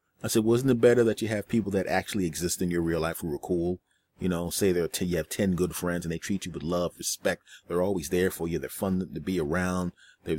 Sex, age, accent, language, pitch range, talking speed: male, 30-49, American, English, 85-105 Hz, 265 wpm